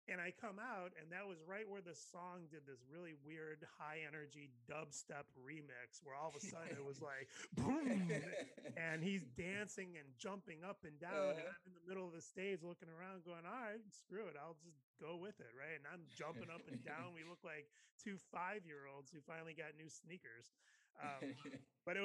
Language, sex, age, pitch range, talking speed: English, male, 30-49, 125-165 Hz, 210 wpm